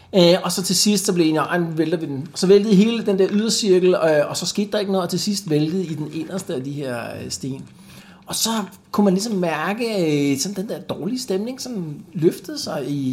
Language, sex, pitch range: Danish, male, 130-175 Hz